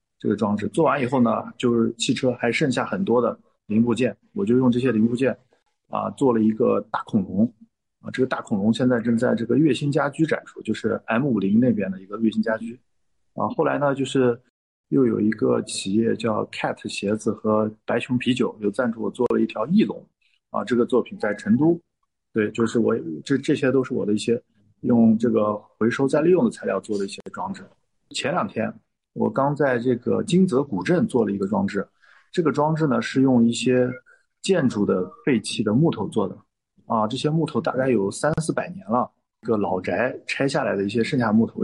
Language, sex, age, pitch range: Chinese, male, 50-69, 110-145 Hz